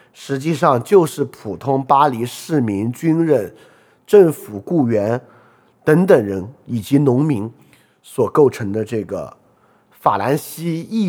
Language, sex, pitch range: Chinese, male, 105-145 Hz